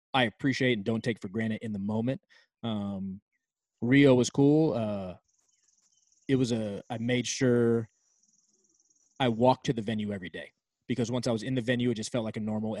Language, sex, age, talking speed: English, male, 20-39, 190 wpm